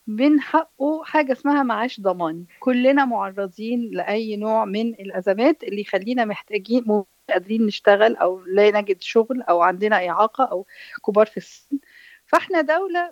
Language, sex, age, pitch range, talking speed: Arabic, female, 50-69, 210-270 Hz, 140 wpm